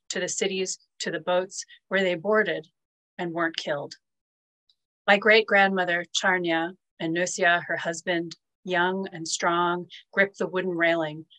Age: 30-49